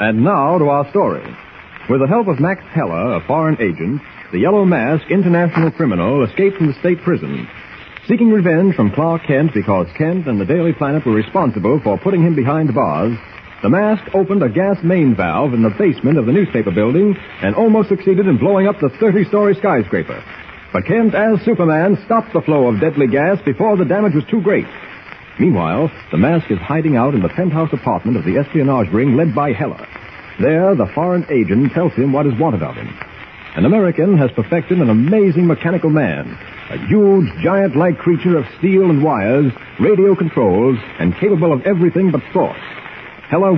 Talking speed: 185 wpm